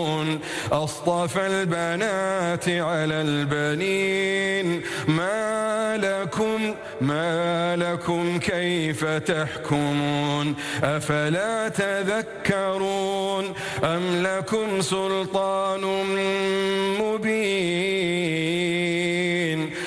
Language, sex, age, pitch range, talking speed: Arabic, male, 40-59, 155-185 Hz, 50 wpm